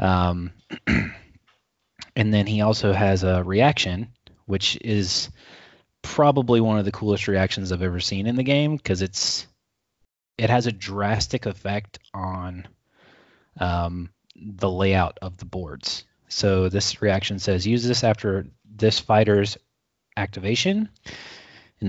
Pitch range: 95-120 Hz